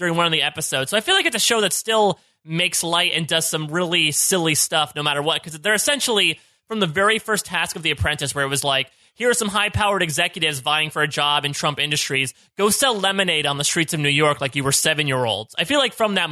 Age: 20-39